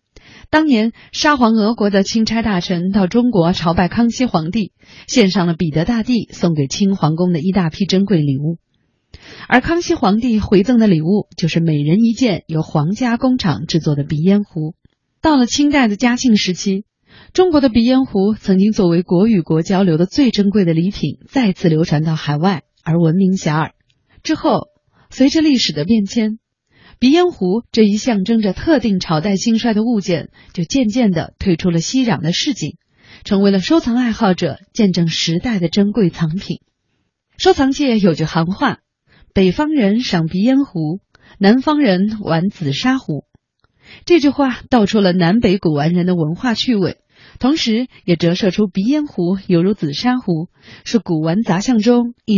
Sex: female